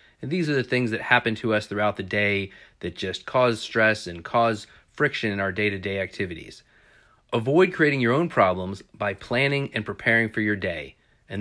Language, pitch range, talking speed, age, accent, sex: English, 105-130 Hz, 190 wpm, 30-49, American, male